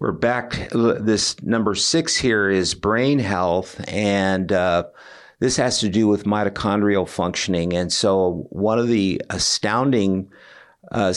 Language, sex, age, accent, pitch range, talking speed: English, male, 50-69, American, 95-110 Hz, 135 wpm